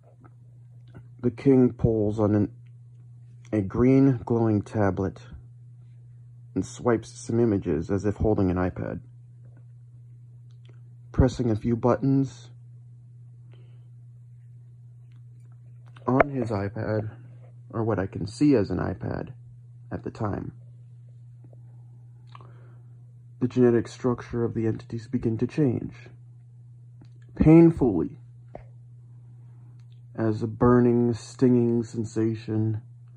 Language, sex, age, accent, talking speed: English, male, 30-49, American, 90 wpm